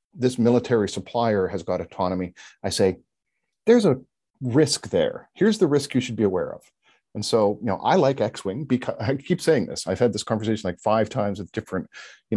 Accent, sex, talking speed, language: American, male, 205 wpm, English